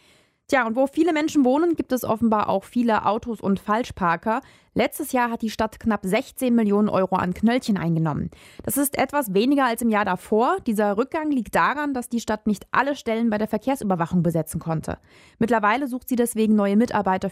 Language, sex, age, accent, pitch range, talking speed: German, female, 20-39, German, 195-250 Hz, 190 wpm